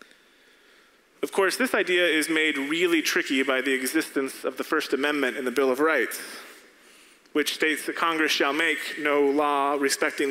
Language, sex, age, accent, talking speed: English, male, 30-49, American, 170 wpm